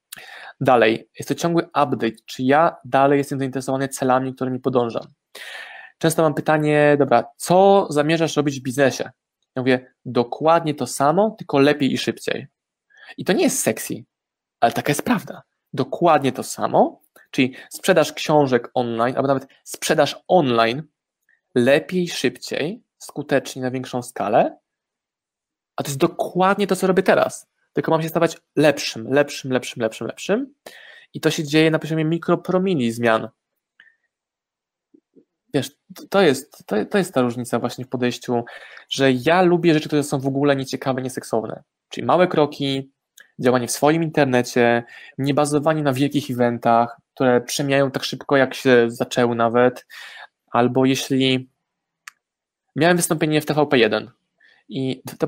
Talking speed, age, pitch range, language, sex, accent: 140 wpm, 20-39, 125-160 Hz, Polish, male, native